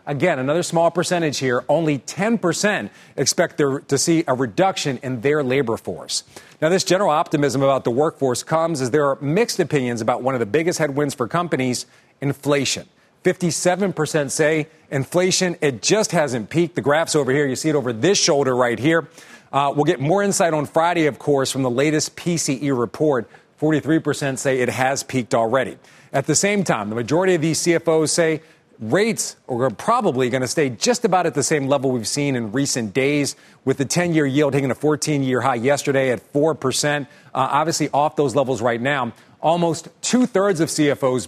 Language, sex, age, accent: English, male, 40-59, American